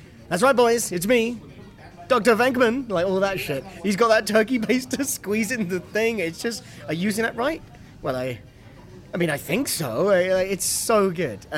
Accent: British